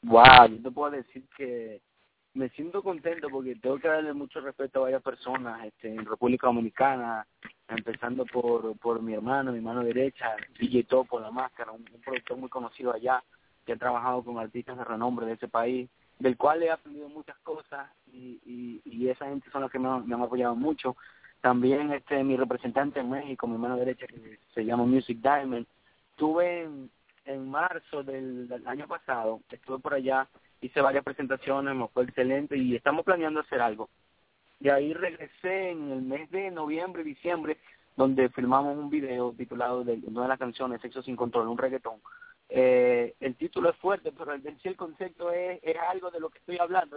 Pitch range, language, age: 125-155 Hz, English, 30-49